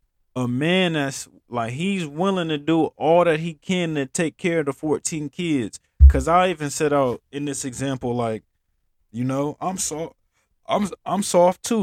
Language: English